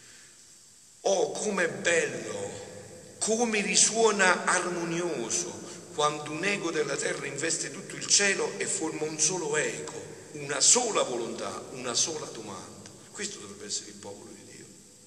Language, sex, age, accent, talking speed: Italian, male, 50-69, native, 135 wpm